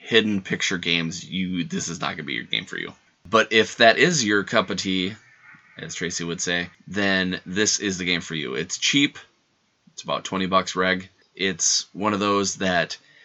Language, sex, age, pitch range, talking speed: English, male, 20-39, 90-100 Hz, 205 wpm